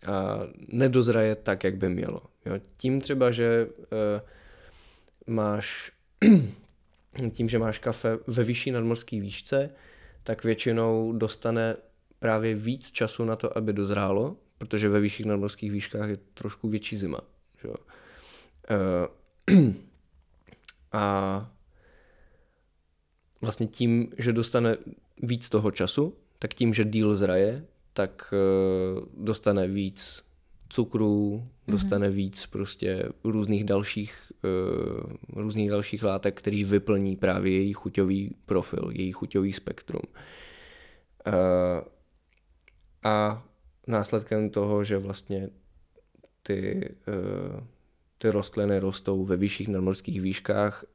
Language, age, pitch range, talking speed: Czech, 20-39, 95-110 Hz, 95 wpm